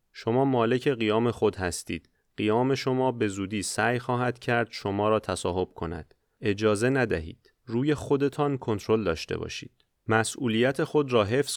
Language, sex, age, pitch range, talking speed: Persian, male, 30-49, 105-130 Hz, 140 wpm